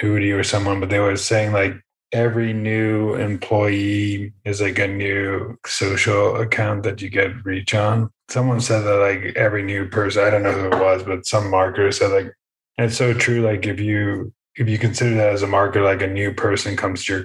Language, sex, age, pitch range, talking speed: English, male, 20-39, 95-110 Hz, 205 wpm